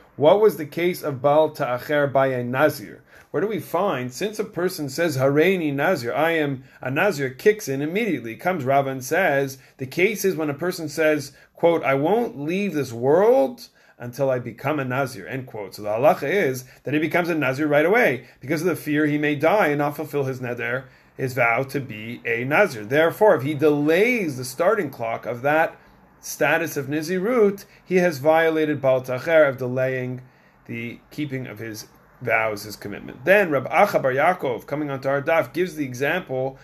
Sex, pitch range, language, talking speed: male, 130-165 Hz, English, 185 wpm